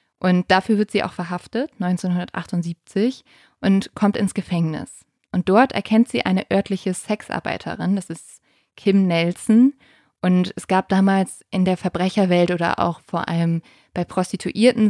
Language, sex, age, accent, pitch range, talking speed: German, female, 20-39, German, 180-215 Hz, 140 wpm